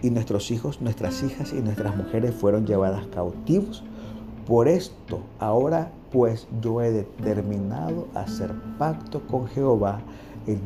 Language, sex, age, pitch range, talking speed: Spanish, male, 50-69, 105-130 Hz, 130 wpm